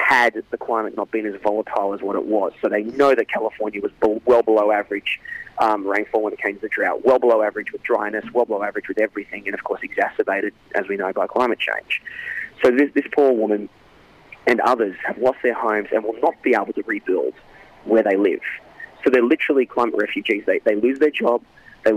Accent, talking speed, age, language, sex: Australian, 220 wpm, 30-49, English, male